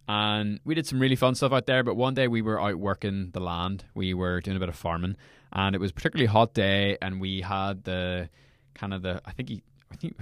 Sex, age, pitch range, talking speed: male, 20-39, 95-130 Hz, 265 wpm